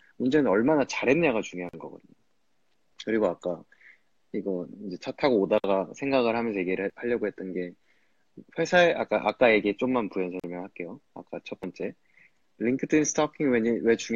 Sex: male